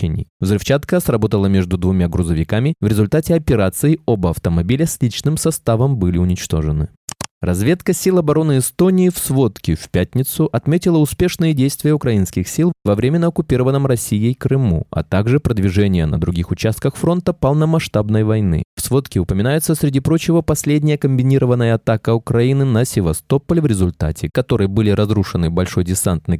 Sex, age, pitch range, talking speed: male, 20-39, 95-150 Hz, 135 wpm